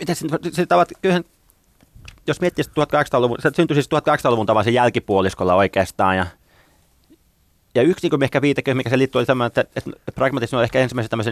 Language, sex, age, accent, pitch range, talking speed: Finnish, male, 30-49, native, 95-120 Hz, 165 wpm